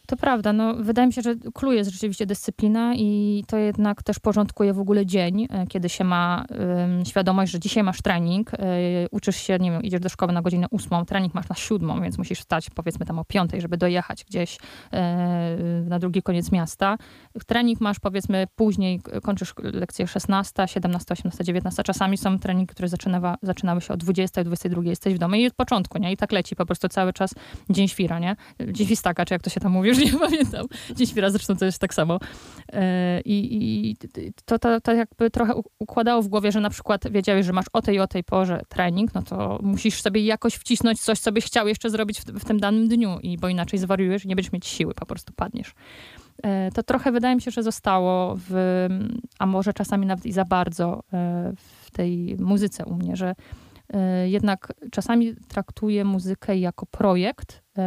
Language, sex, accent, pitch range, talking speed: Polish, female, native, 185-215 Hz, 200 wpm